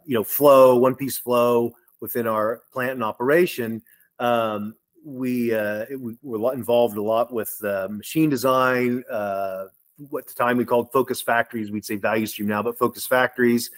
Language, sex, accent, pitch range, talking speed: English, male, American, 115-145 Hz, 180 wpm